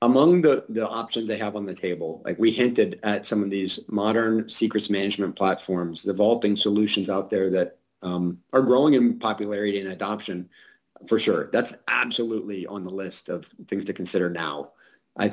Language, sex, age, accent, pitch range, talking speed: English, male, 40-59, American, 100-115 Hz, 180 wpm